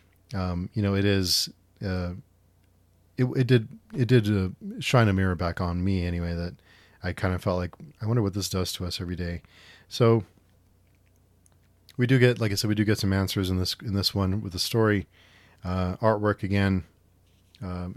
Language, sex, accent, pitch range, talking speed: English, male, American, 90-110 Hz, 190 wpm